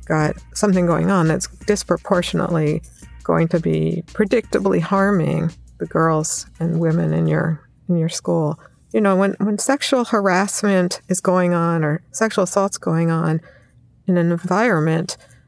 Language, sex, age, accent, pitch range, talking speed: English, female, 50-69, American, 160-185 Hz, 145 wpm